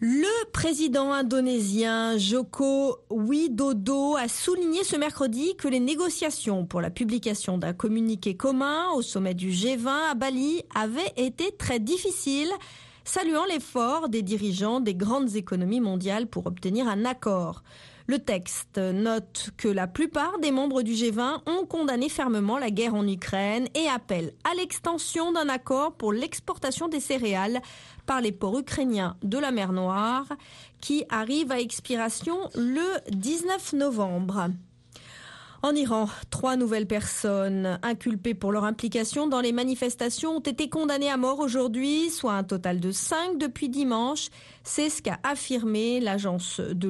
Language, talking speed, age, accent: French, 145 wpm, 40-59, French